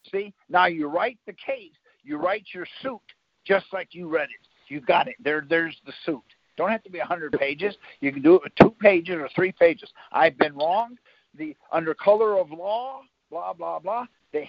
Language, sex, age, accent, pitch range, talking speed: English, male, 50-69, American, 165-225 Hz, 205 wpm